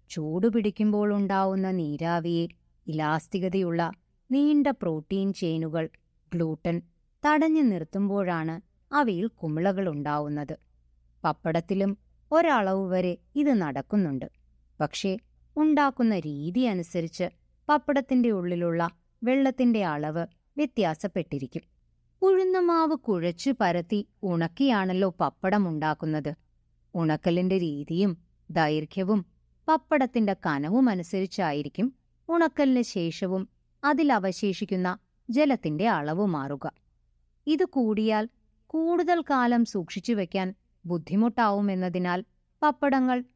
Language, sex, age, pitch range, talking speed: Malayalam, female, 20-39, 170-260 Hz, 65 wpm